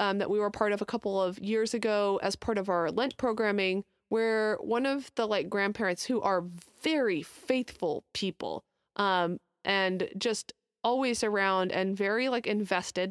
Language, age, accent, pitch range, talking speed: English, 20-39, American, 195-240 Hz, 170 wpm